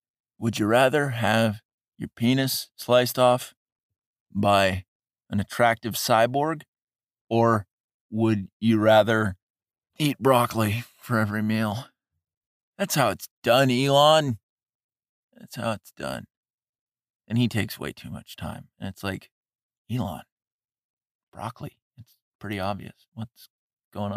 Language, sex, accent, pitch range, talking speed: English, male, American, 105-130 Hz, 115 wpm